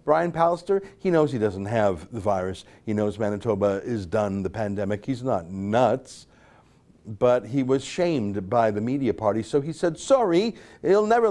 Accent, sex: American, male